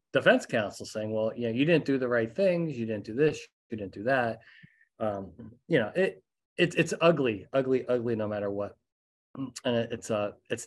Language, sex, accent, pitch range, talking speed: English, male, American, 110-135 Hz, 210 wpm